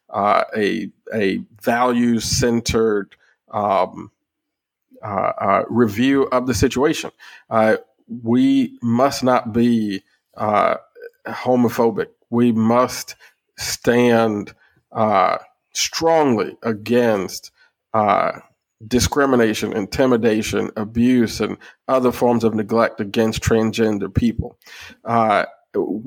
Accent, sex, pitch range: American, male, 110-130 Hz